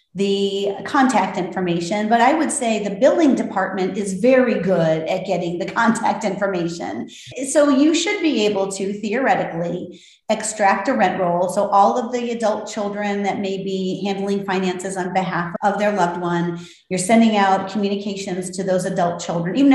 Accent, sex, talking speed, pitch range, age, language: American, female, 165 wpm, 185-220 Hz, 30-49, English